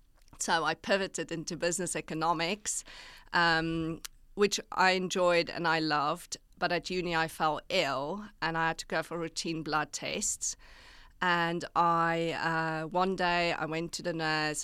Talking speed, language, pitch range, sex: 155 wpm, English, 155-180 Hz, female